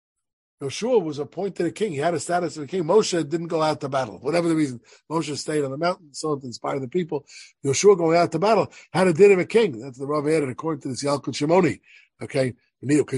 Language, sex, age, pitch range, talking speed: English, male, 50-69, 125-160 Hz, 245 wpm